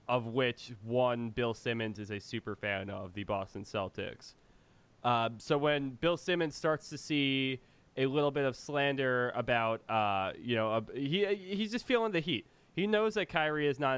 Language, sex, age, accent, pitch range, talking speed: English, male, 20-39, American, 115-150 Hz, 185 wpm